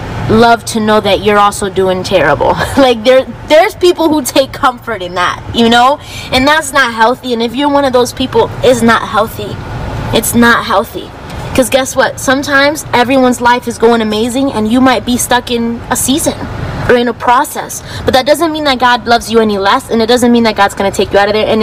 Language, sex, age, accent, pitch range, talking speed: Spanish, female, 20-39, American, 225-270 Hz, 225 wpm